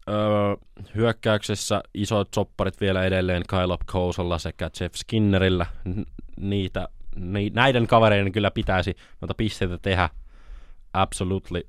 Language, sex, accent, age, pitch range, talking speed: Finnish, male, native, 20-39, 80-100 Hz, 115 wpm